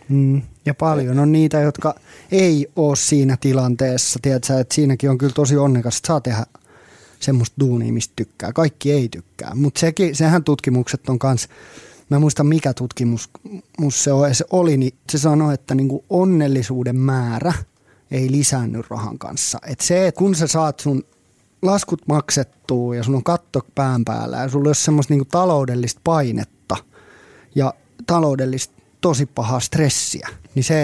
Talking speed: 155 wpm